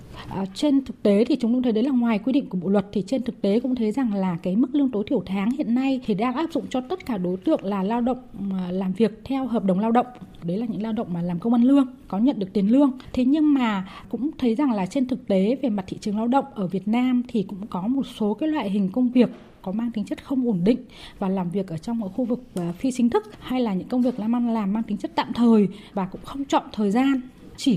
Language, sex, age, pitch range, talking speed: Vietnamese, female, 20-39, 205-260 Hz, 285 wpm